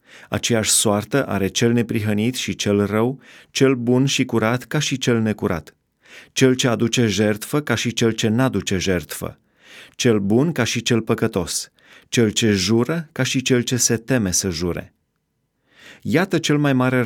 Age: 30-49